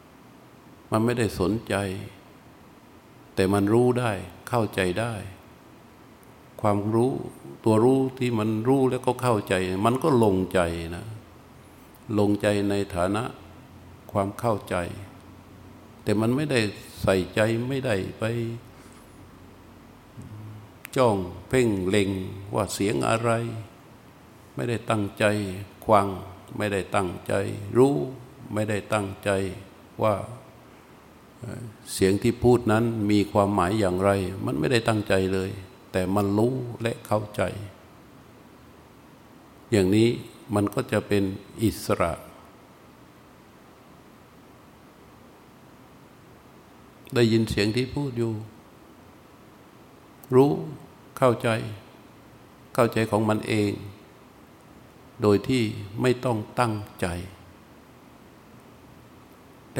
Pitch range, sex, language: 100-120 Hz, male, Thai